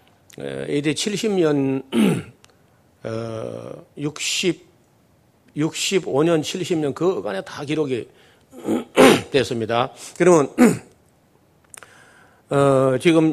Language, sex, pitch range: Korean, male, 125-160 Hz